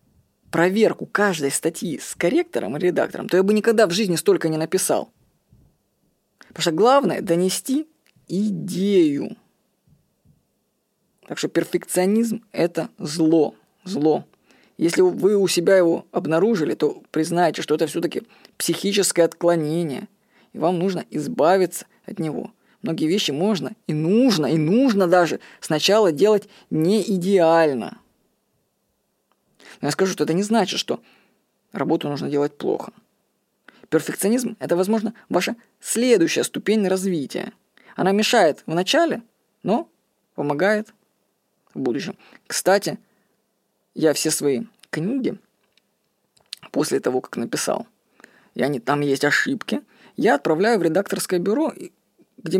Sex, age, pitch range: female, 20-39, 170-220 Hz